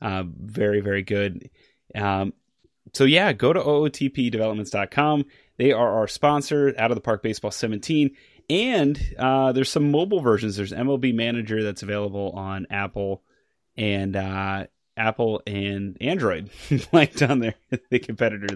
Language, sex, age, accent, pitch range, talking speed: English, male, 30-49, American, 105-140 Hz, 140 wpm